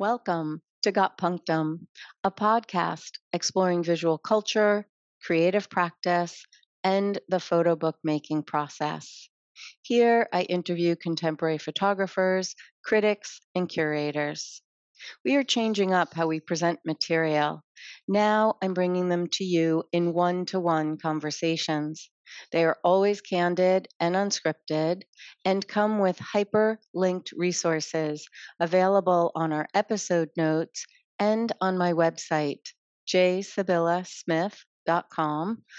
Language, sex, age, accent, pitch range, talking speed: English, female, 40-59, American, 160-190 Hz, 105 wpm